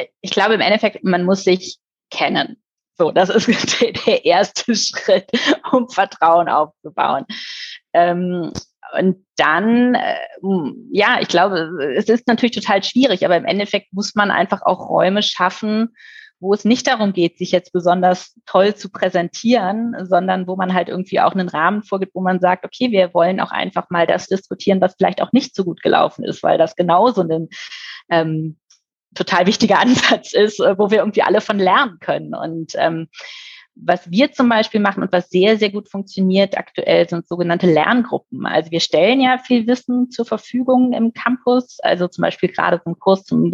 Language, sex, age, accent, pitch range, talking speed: German, female, 30-49, German, 180-235 Hz, 175 wpm